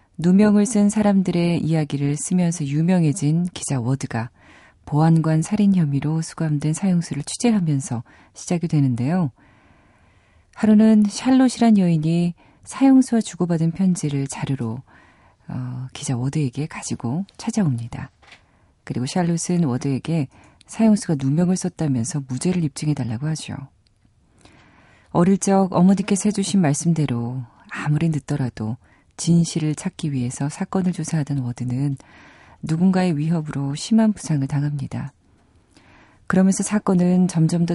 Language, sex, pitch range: Korean, female, 130-180 Hz